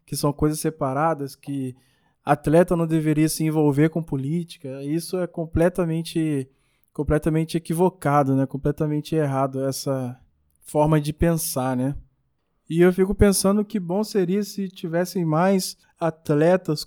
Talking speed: 130 wpm